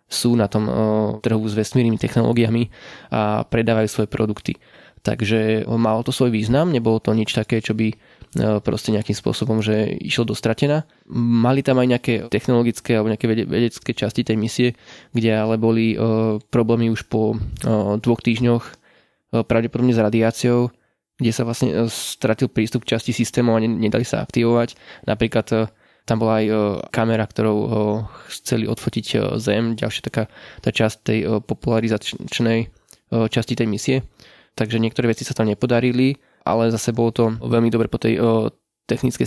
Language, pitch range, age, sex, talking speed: Slovak, 110-120 Hz, 20-39, male, 155 wpm